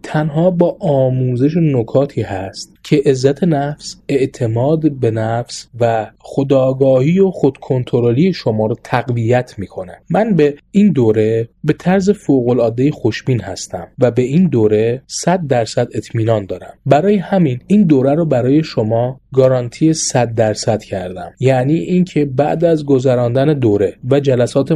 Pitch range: 115-155 Hz